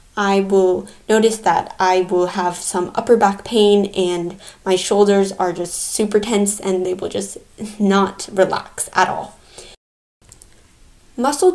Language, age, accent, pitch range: English, 10-29, American, 190-225 Hz